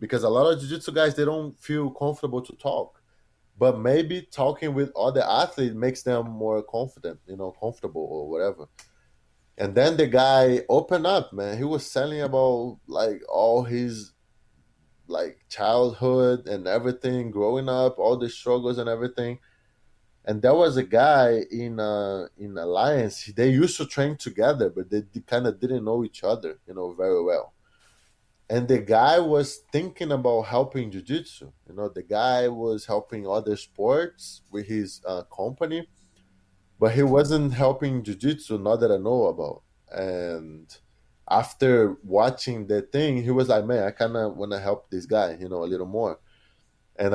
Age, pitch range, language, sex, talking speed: 20-39, 105-135 Hz, English, male, 170 wpm